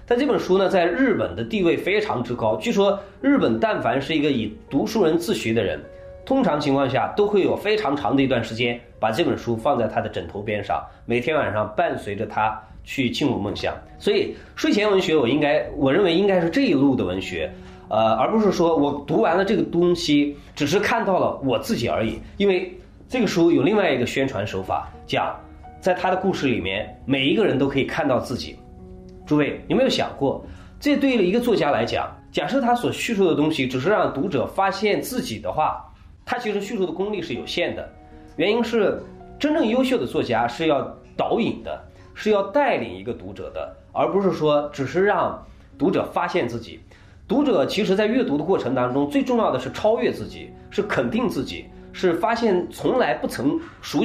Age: 20-39